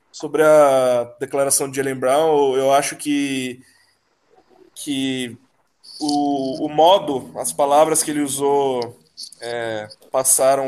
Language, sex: Portuguese, male